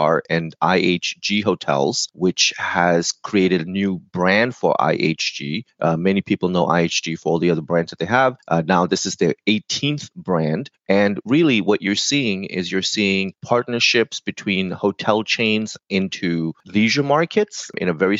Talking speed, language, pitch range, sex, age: 160 wpm, English, 85-105 Hz, male, 30-49